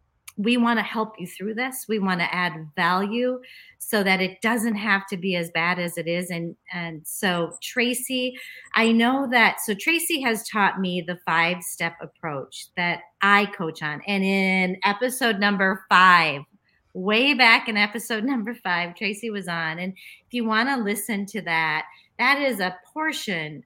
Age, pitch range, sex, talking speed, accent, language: 30-49, 170-225 Hz, female, 180 wpm, American, English